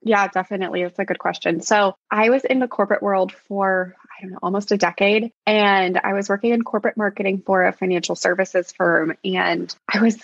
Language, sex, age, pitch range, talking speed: English, female, 20-39, 180-215 Hz, 205 wpm